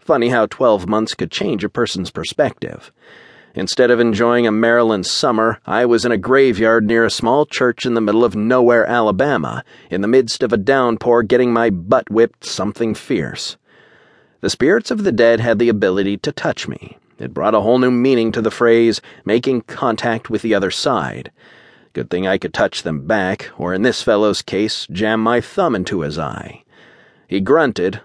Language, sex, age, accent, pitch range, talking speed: English, male, 40-59, American, 105-120 Hz, 190 wpm